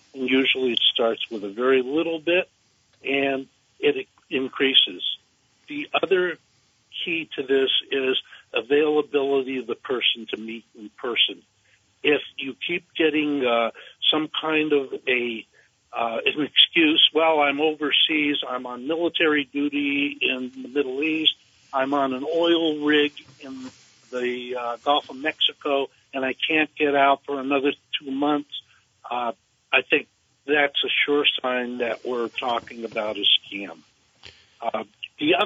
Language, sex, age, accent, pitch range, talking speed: English, male, 50-69, American, 125-160 Hz, 140 wpm